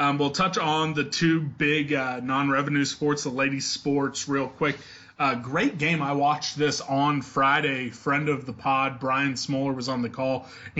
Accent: American